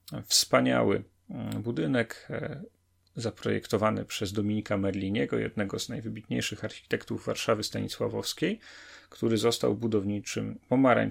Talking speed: 80 wpm